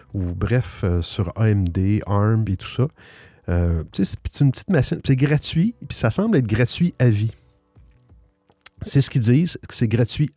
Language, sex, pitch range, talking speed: French, male, 100-130 Hz, 170 wpm